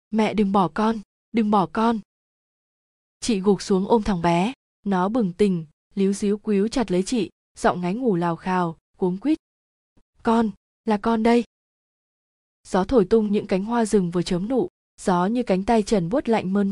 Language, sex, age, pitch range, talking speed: Vietnamese, female, 20-39, 185-225 Hz, 185 wpm